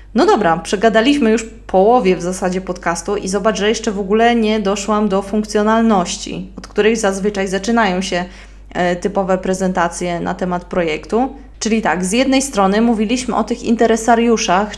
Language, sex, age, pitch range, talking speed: Polish, female, 20-39, 185-215 Hz, 150 wpm